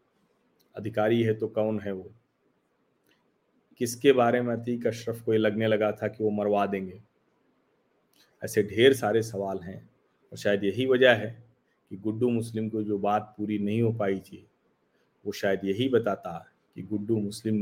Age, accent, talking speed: 40-59, native, 160 wpm